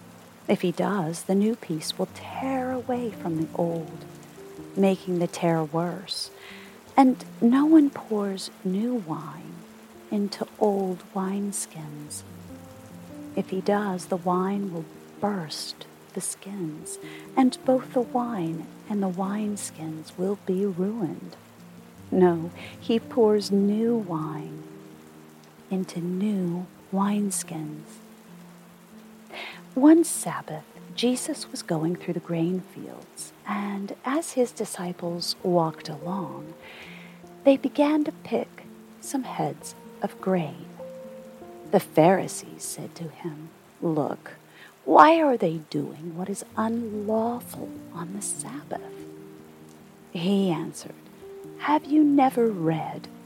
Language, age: English, 40-59